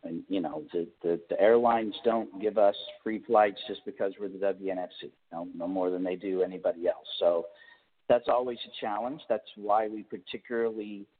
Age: 50-69